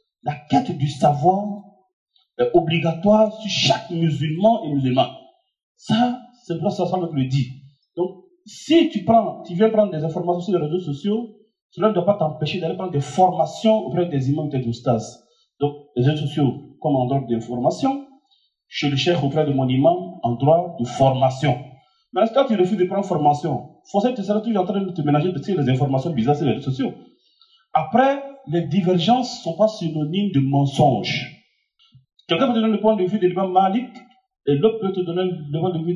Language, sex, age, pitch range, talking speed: French, male, 40-59, 150-220 Hz, 205 wpm